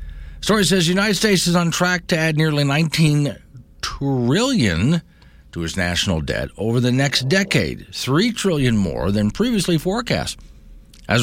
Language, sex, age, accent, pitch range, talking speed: English, male, 50-69, American, 85-140 Hz, 150 wpm